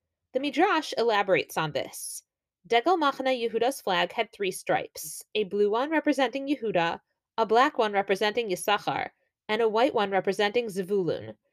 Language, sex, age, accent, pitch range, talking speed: English, female, 20-39, American, 190-260 Hz, 145 wpm